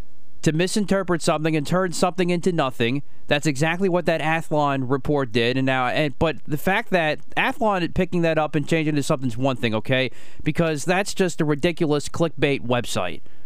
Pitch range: 145-200 Hz